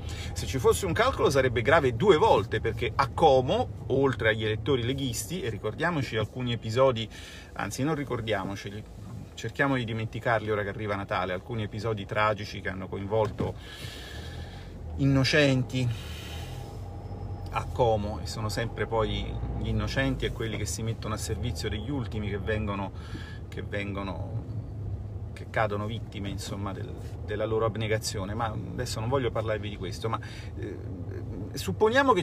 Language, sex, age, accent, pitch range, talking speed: Italian, male, 40-59, native, 100-120 Hz, 140 wpm